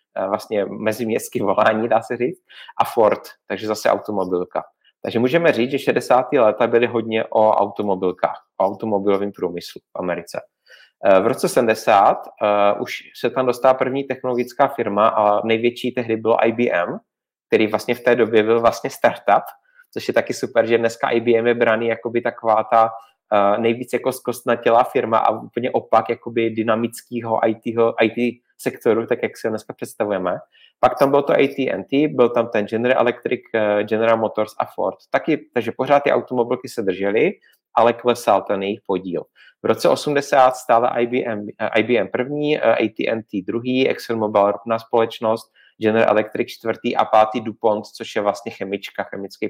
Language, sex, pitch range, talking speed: Czech, male, 110-125 Hz, 150 wpm